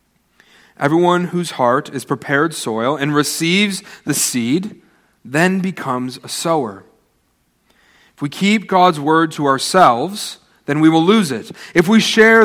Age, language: 40-59, English